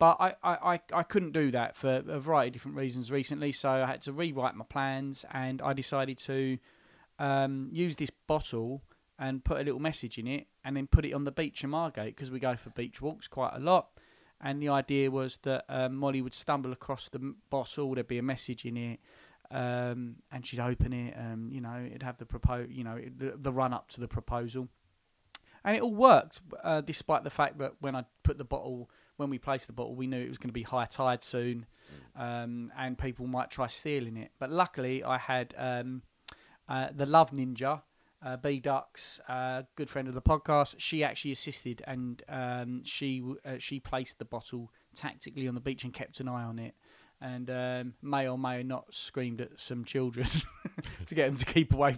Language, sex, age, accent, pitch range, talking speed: English, male, 30-49, British, 125-140 Hz, 215 wpm